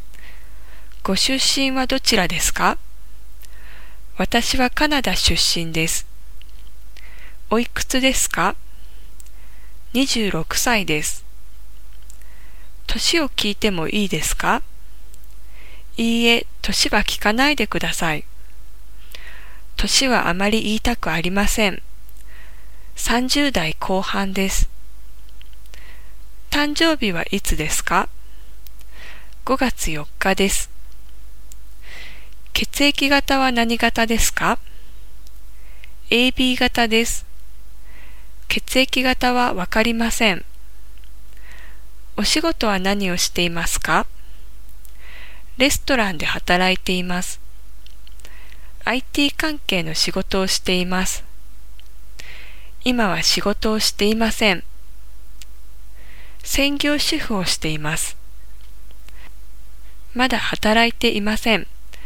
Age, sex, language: 20-39, female, English